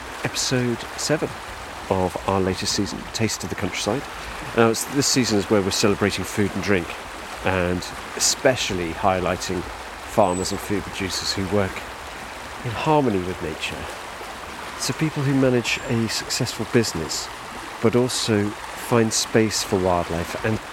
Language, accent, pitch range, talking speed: English, British, 90-115 Hz, 135 wpm